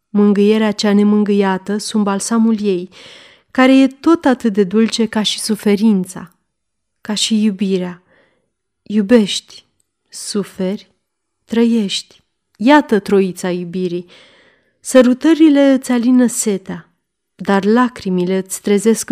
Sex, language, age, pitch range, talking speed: female, Romanian, 30-49, 190-230 Hz, 100 wpm